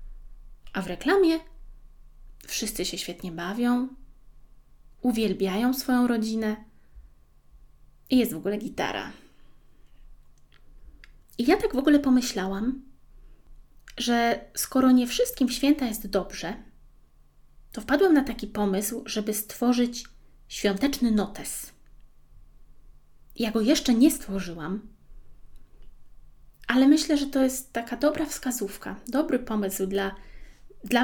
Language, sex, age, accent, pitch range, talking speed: Polish, female, 20-39, native, 205-280 Hz, 105 wpm